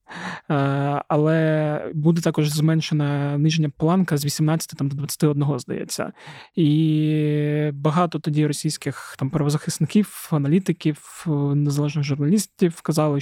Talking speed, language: 95 wpm, Ukrainian